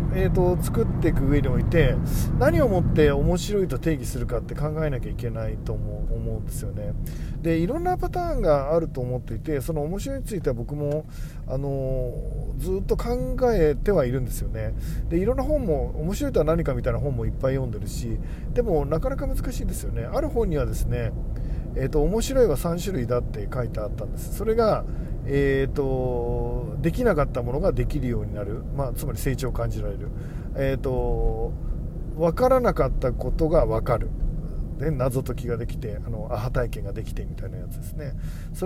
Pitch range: 115-150 Hz